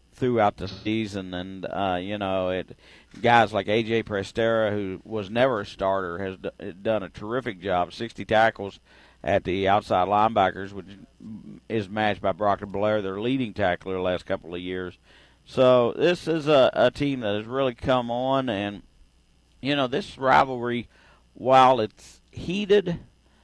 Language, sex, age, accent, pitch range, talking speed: English, male, 50-69, American, 100-120 Hz, 155 wpm